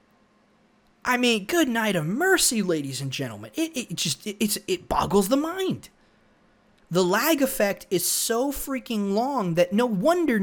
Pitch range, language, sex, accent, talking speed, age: 145-200 Hz, English, male, American, 155 wpm, 20-39